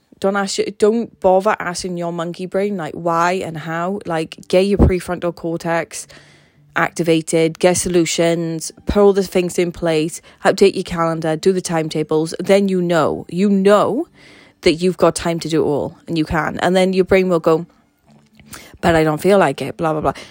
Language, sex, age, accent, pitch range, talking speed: English, female, 20-39, British, 160-190 Hz, 185 wpm